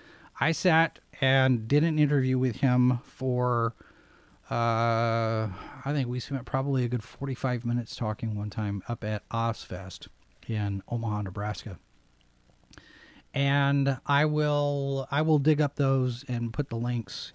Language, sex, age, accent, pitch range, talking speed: English, male, 40-59, American, 115-155 Hz, 140 wpm